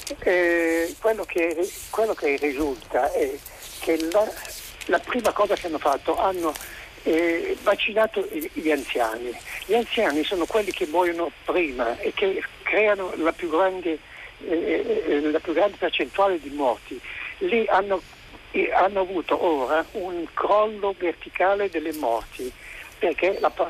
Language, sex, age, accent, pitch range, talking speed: Italian, male, 60-79, native, 160-235 Hz, 135 wpm